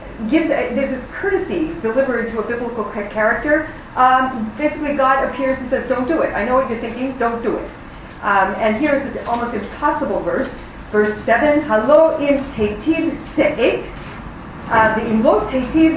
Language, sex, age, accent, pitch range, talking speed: English, female, 40-59, American, 230-320 Hz, 160 wpm